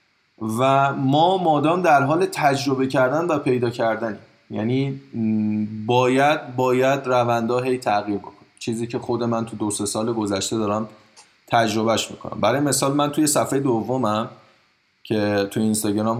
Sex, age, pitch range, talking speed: male, 20-39, 105-125 Hz, 140 wpm